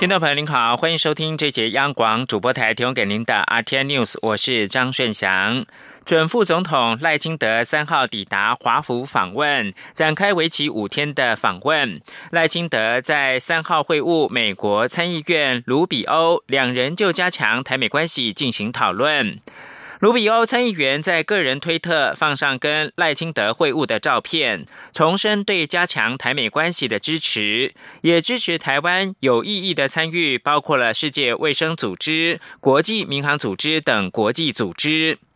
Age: 20-39